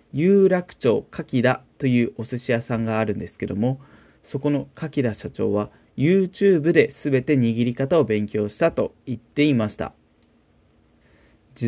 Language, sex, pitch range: Japanese, male, 115-160 Hz